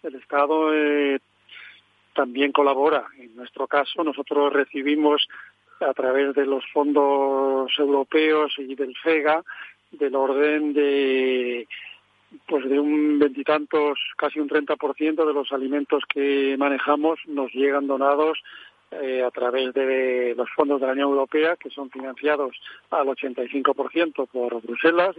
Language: Spanish